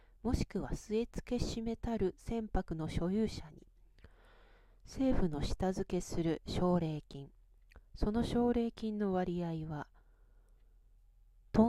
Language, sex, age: Japanese, female, 40-59